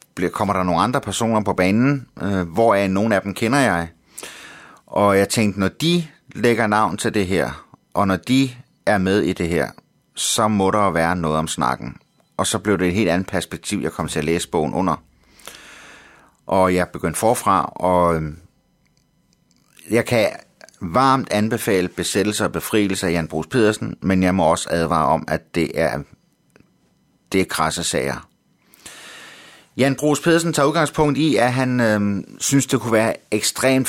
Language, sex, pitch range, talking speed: Danish, male, 90-115 Hz, 170 wpm